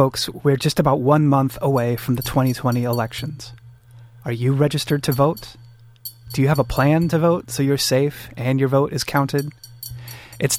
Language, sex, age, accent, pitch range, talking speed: English, male, 30-49, American, 120-140 Hz, 180 wpm